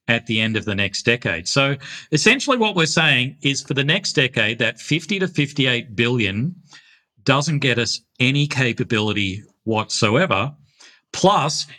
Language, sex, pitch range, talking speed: English, male, 110-145 Hz, 150 wpm